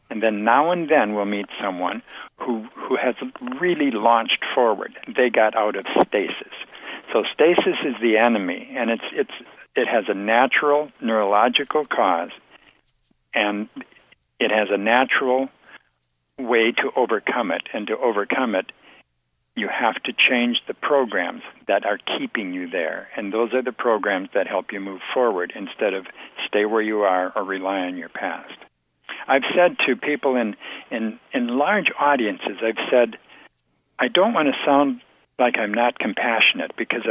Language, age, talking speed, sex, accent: English, 60-79, 160 wpm, male, American